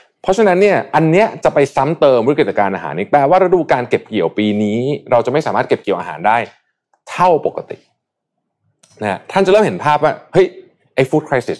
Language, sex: Thai, male